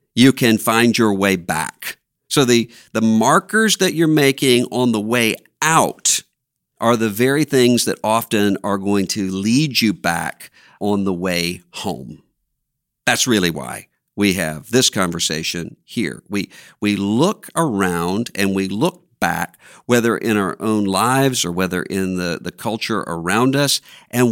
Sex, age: male, 50-69